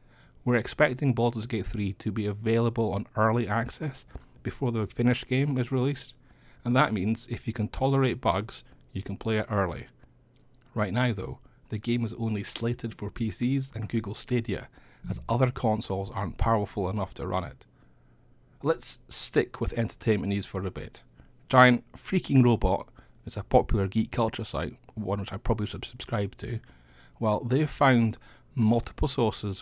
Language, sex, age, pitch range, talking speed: English, male, 40-59, 105-125 Hz, 165 wpm